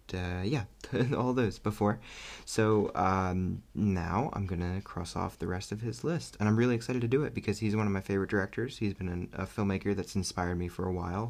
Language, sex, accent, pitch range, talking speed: English, male, American, 90-115 Hz, 220 wpm